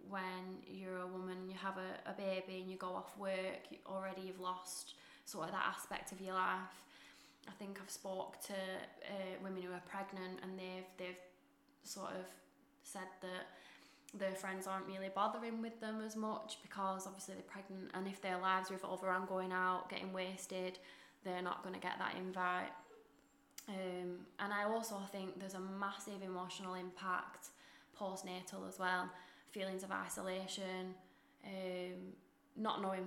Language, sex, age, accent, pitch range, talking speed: English, female, 10-29, British, 185-195 Hz, 160 wpm